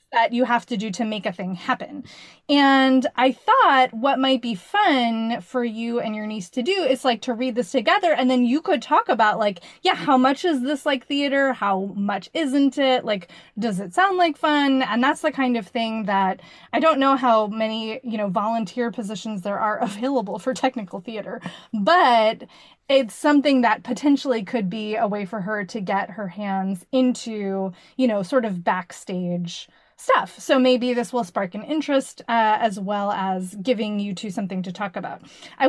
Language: English